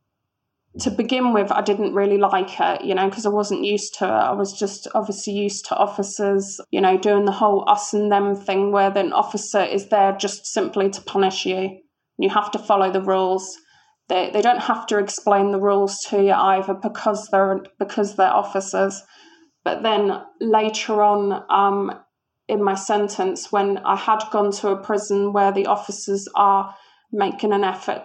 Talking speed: 185 wpm